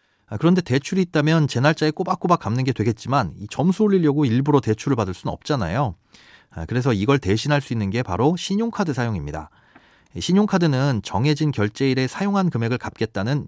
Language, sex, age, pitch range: Korean, male, 40-59, 115-175 Hz